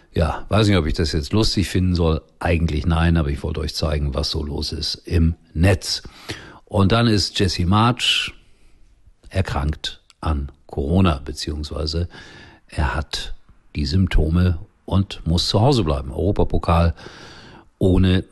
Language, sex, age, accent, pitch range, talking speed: German, male, 50-69, German, 80-100 Hz, 140 wpm